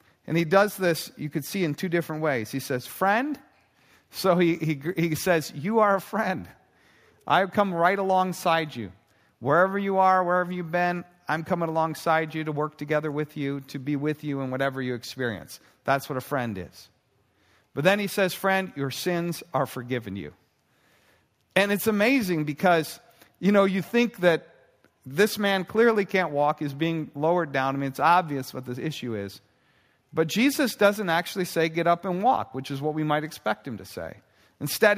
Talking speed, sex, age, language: 190 wpm, male, 50-69, English